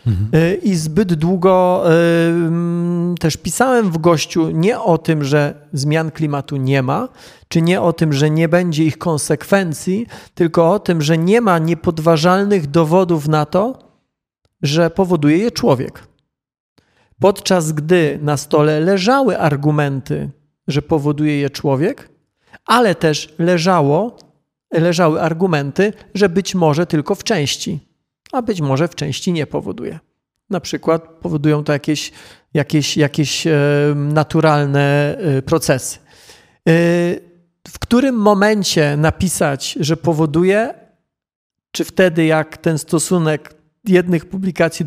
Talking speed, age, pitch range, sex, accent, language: 115 wpm, 40-59, 155-185 Hz, male, native, Polish